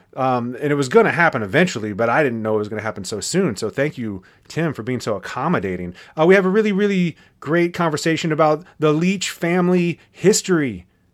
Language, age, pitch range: English, 30-49, 125-185 Hz